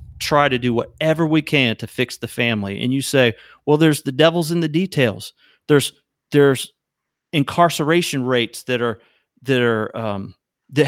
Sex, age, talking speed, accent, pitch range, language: male, 40-59, 165 wpm, American, 130-180 Hz, English